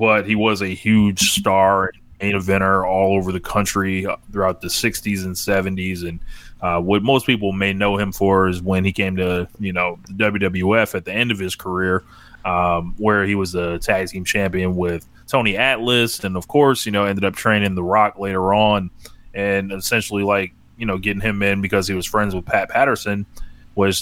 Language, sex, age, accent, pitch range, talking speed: English, male, 20-39, American, 95-110 Hz, 200 wpm